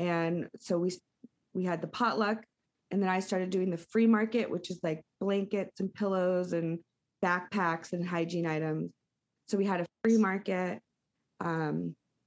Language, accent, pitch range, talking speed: English, American, 175-210 Hz, 160 wpm